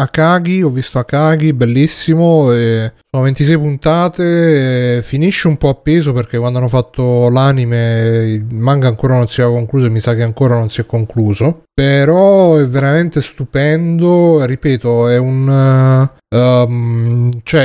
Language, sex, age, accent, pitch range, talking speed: Italian, male, 30-49, native, 120-150 Hz, 155 wpm